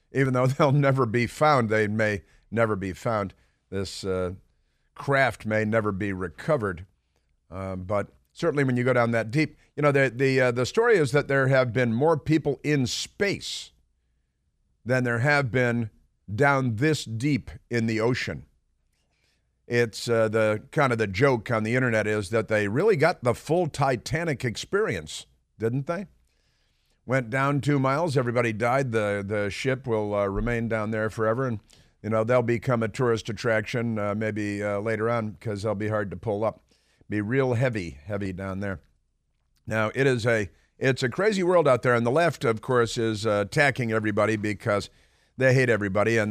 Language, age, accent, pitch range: English, 50-69, American, 100-130 Hz